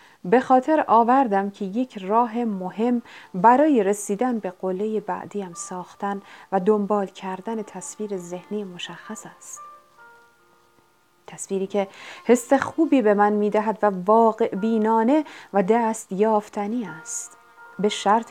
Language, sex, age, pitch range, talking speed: Persian, female, 30-49, 195-245 Hz, 120 wpm